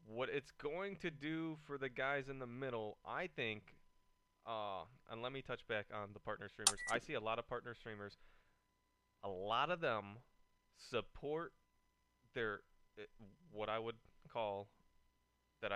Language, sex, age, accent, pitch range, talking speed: English, male, 20-39, American, 100-125 Hz, 160 wpm